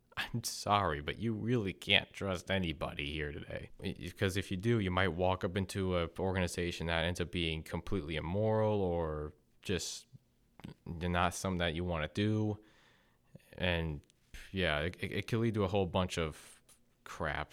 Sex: male